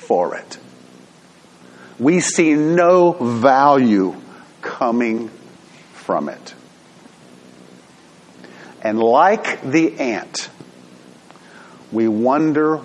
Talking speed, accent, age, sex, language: 65 wpm, American, 50-69, male, English